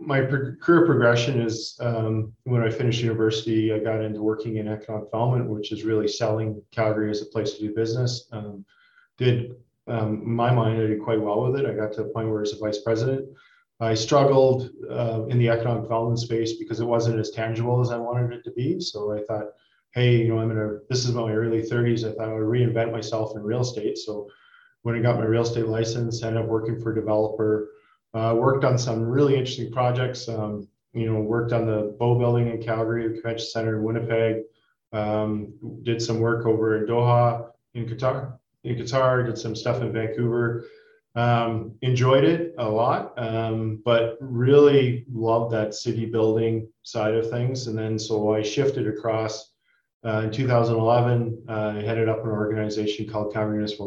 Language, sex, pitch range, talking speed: English, male, 110-120 Hz, 200 wpm